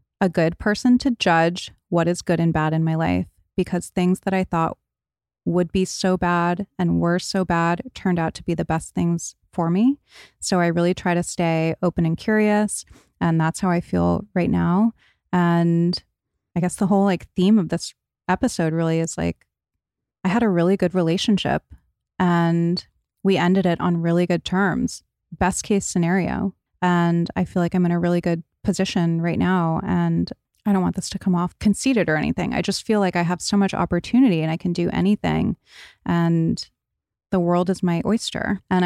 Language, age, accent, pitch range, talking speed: English, 20-39, American, 165-190 Hz, 195 wpm